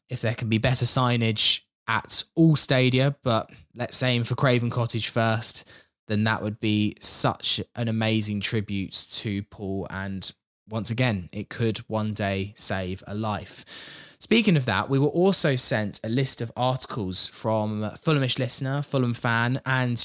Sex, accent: male, British